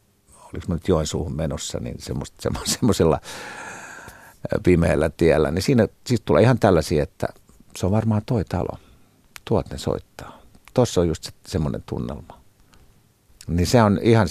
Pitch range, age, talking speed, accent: 80-105 Hz, 50-69, 140 wpm, native